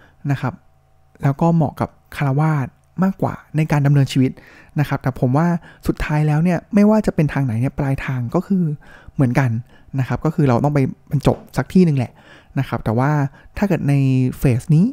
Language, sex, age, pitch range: Thai, male, 20-39, 130-165 Hz